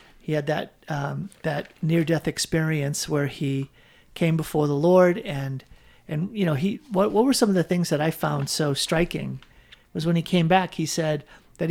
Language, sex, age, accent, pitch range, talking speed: English, male, 50-69, American, 145-175 Hz, 195 wpm